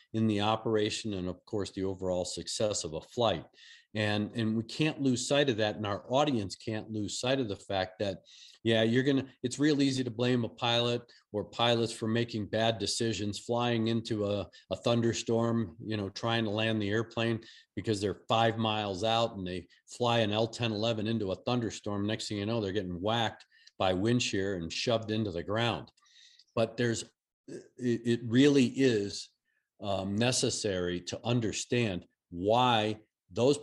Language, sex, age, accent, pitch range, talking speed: English, male, 50-69, American, 105-120 Hz, 175 wpm